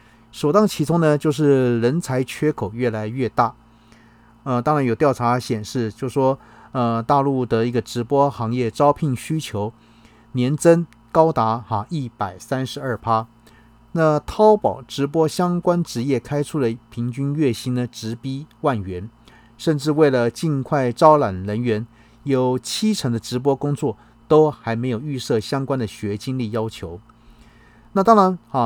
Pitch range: 115-145 Hz